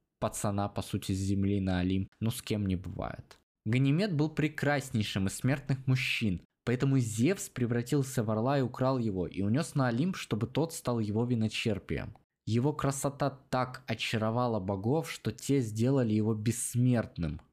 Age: 20-39